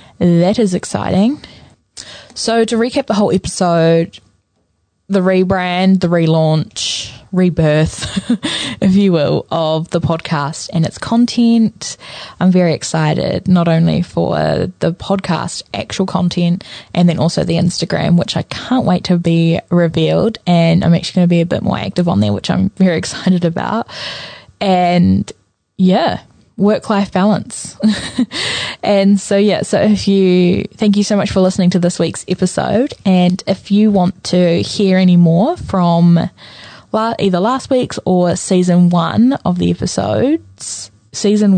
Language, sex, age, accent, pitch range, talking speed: English, female, 10-29, Australian, 170-200 Hz, 150 wpm